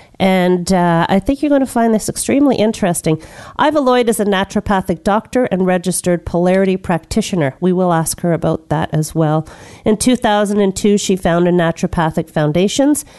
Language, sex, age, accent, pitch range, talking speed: English, female, 40-59, American, 165-210 Hz, 160 wpm